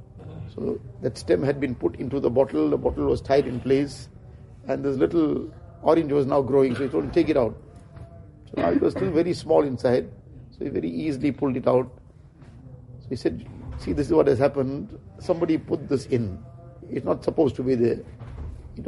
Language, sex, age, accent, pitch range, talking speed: English, male, 50-69, Indian, 120-145 Hz, 205 wpm